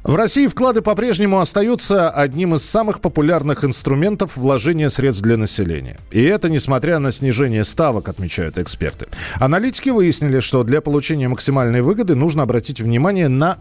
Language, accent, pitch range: Russian, native, 120-170 Hz